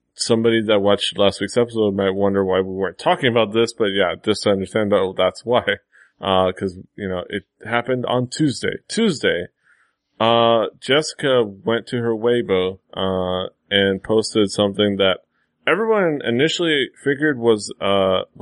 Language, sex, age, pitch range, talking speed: English, male, 20-39, 95-115 Hz, 155 wpm